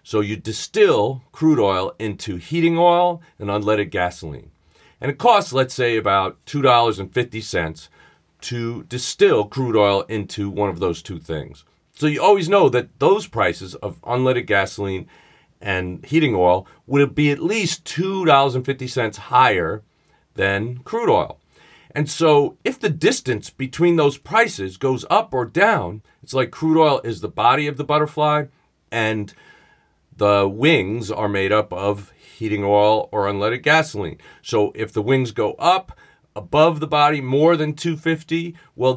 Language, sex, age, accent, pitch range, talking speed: English, male, 40-59, American, 100-145 Hz, 150 wpm